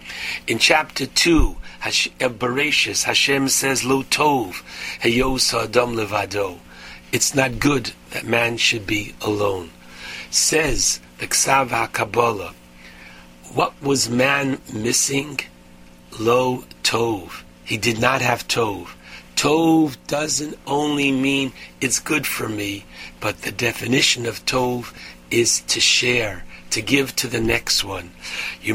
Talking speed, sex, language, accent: 120 wpm, male, English, American